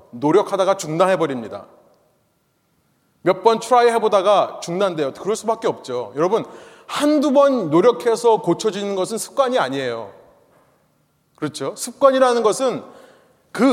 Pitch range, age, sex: 200-270 Hz, 30-49, male